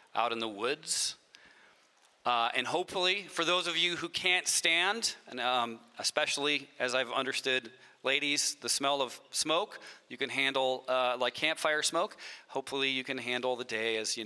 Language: English